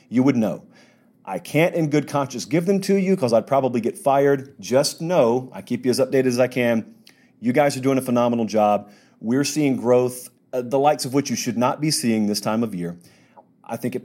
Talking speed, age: 230 wpm, 40-59